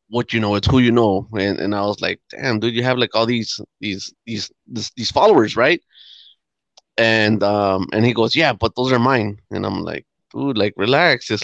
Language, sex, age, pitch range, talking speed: English, male, 20-39, 110-145 Hz, 220 wpm